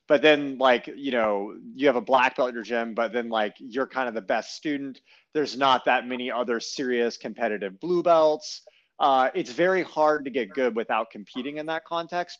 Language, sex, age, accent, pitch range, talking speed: English, male, 30-49, American, 115-155 Hz, 210 wpm